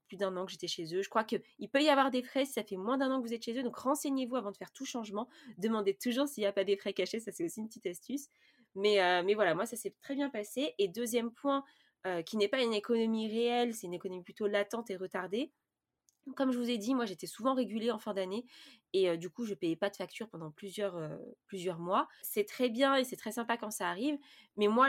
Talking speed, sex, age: 270 wpm, female, 20-39